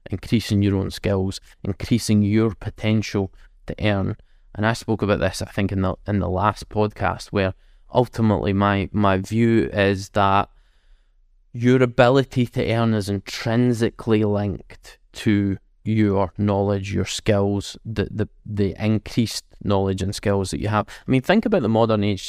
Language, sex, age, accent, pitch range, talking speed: English, male, 20-39, British, 100-115 Hz, 155 wpm